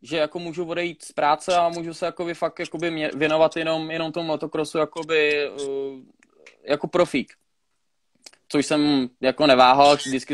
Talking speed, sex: 155 wpm, male